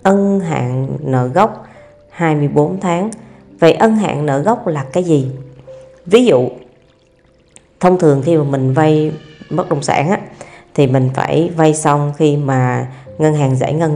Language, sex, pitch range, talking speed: Vietnamese, female, 130-170 Hz, 160 wpm